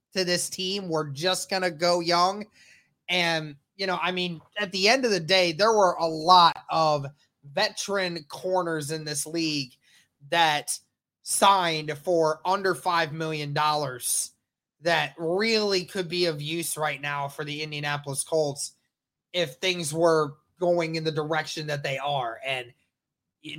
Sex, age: male, 20-39